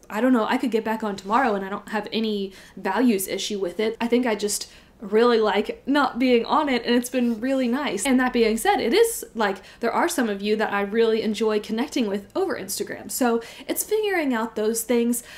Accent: American